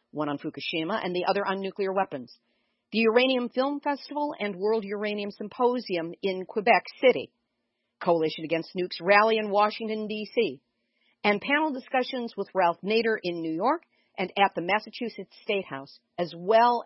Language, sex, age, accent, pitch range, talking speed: English, female, 50-69, American, 165-225 Hz, 155 wpm